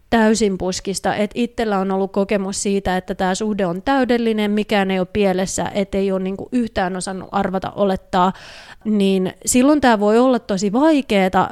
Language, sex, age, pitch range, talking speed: Finnish, female, 30-49, 195-235 Hz, 155 wpm